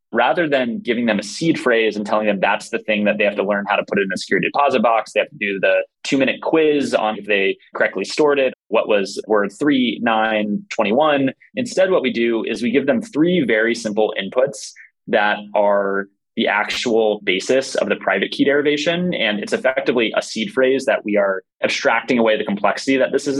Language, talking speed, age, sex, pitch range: English, 215 wpm, 20-39, male, 105-140 Hz